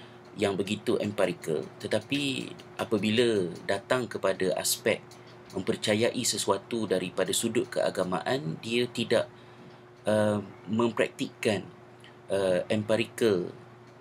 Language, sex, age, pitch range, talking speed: Malay, male, 30-49, 105-120 Hz, 80 wpm